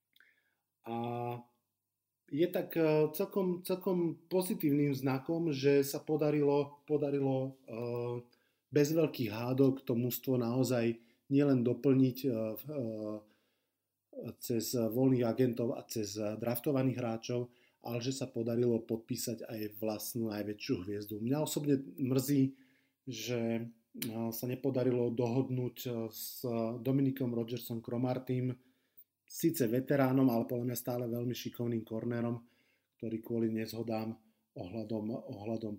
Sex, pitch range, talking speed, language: male, 115-140 Hz, 100 wpm, Slovak